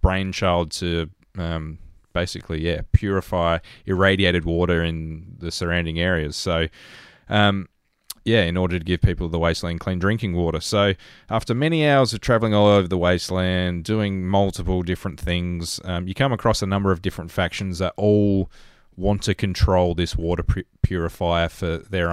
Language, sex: English, male